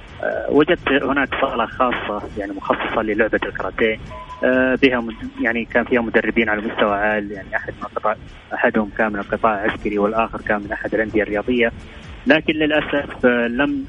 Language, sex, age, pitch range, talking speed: English, male, 20-39, 100-115 Hz, 140 wpm